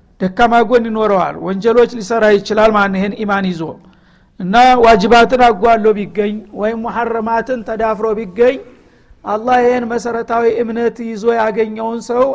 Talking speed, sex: 130 wpm, male